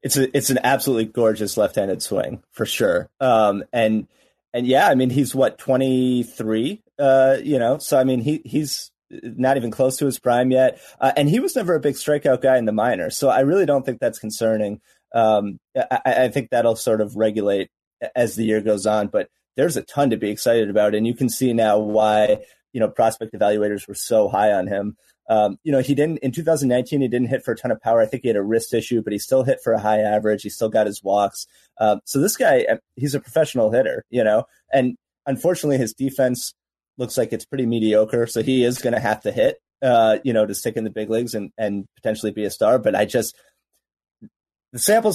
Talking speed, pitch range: 230 wpm, 105-135 Hz